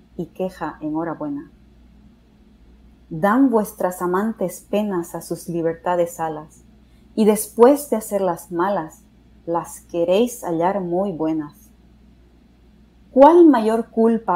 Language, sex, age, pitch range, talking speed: English, female, 30-49, 170-220 Hz, 100 wpm